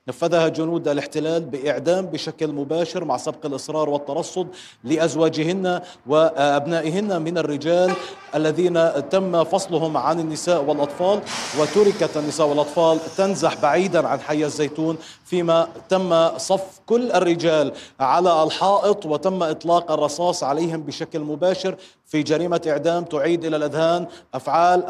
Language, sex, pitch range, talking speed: Arabic, male, 150-170 Hz, 115 wpm